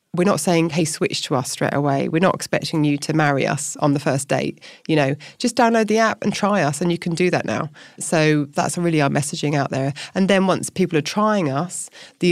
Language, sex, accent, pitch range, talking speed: English, female, British, 150-180 Hz, 245 wpm